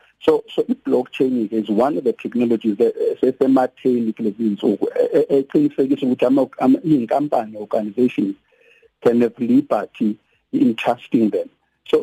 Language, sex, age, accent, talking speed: English, male, 50-69, South African, 120 wpm